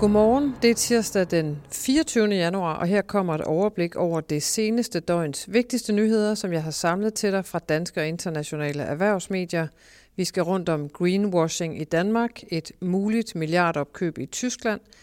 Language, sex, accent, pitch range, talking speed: Danish, female, native, 160-210 Hz, 165 wpm